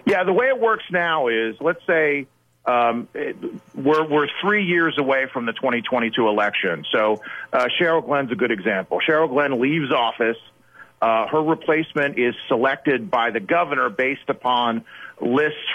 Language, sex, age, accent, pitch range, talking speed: English, male, 40-59, American, 115-145 Hz, 160 wpm